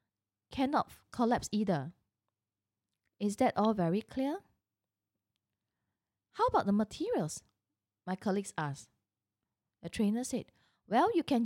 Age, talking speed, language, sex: 20-39, 110 wpm, English, female